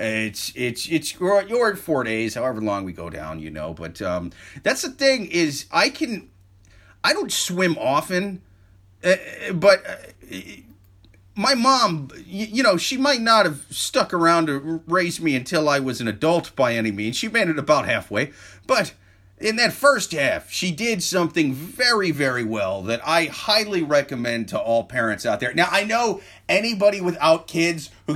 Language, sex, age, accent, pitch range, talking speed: English, male, 30-49, American, 125-180 Hz, 170 wpm